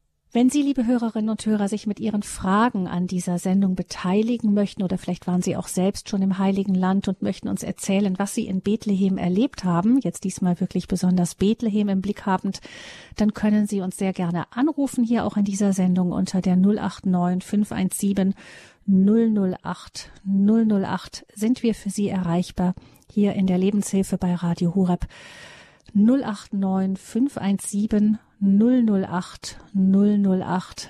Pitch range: 185-220 Hz